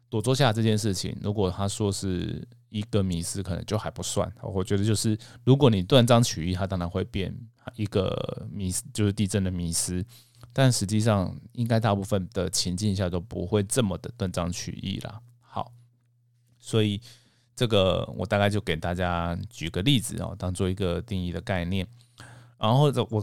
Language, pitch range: Chinese, 95-120 Hz